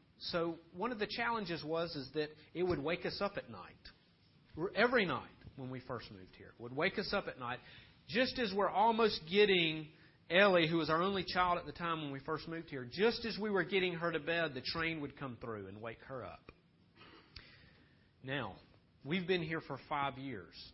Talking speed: 210 wpm